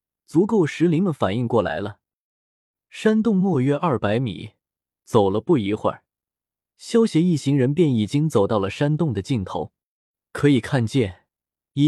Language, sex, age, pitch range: Chinese, male, 20-39, 115-170 Hz